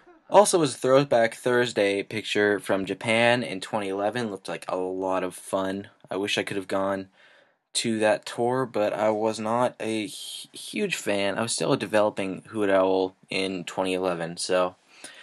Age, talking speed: 20-39, 175 wpm